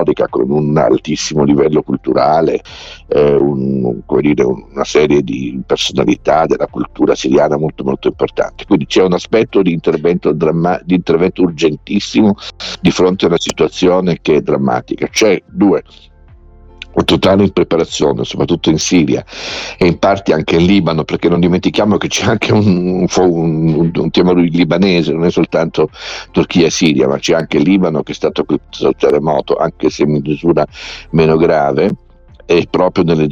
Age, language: 50-69, Italian